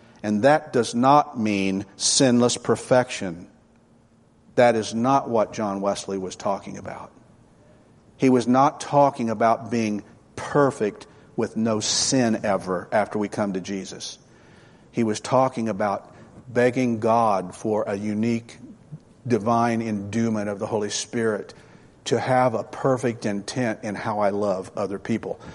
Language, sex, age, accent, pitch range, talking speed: English, male, 50-69, American, 105-130 Hz, 135 wpm